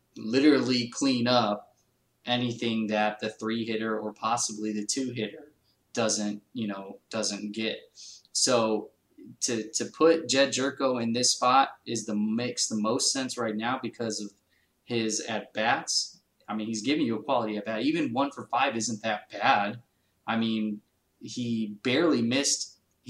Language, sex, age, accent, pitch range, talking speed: English, male, 20-39, American, 110-125 Hz, 160 wpm